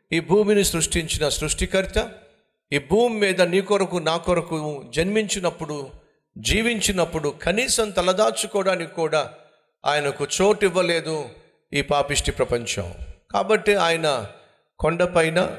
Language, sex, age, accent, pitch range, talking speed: Telugu, male, 50-69, native, 140-180 Hz, 95 wpm